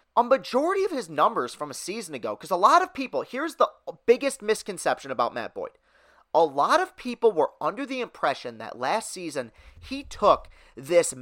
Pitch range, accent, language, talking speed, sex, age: 180-255 Hz, American, English, 185 wpm, male, 30-49